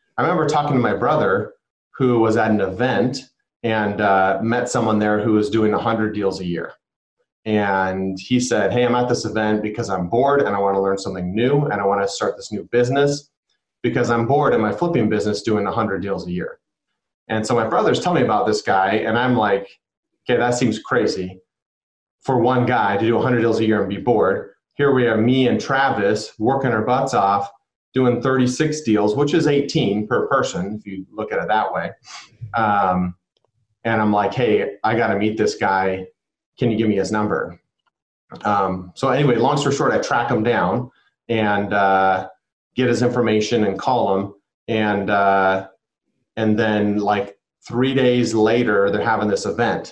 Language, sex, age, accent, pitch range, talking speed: English, male, 30-49, American, 100-120 Hz, 190 wpm